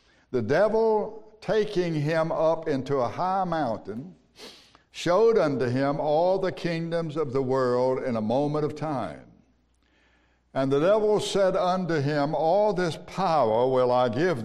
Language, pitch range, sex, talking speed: English, 135-170 Hz, male, 145 wpm